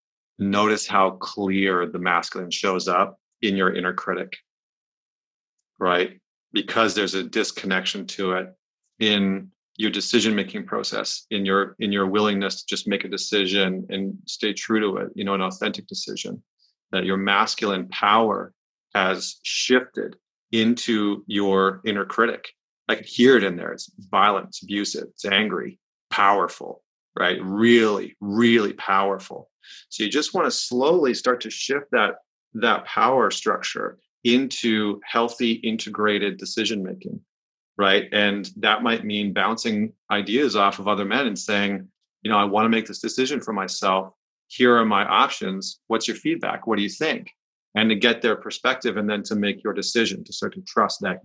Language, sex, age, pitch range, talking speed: English, male, 30-49, 95-115 Hz, 160 wpm